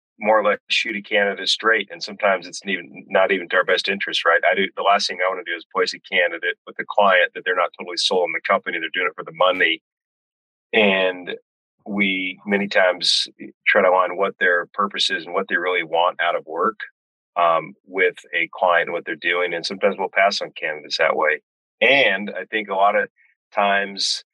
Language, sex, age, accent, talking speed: English, male, 30-49, American, 220 wpm